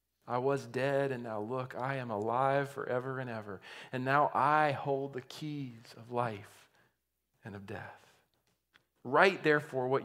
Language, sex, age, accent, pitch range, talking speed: English, male, 40-59, American, 115-145 Hz, 155 wpm